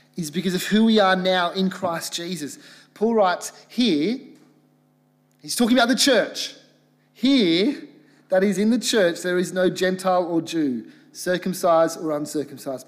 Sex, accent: male, Australian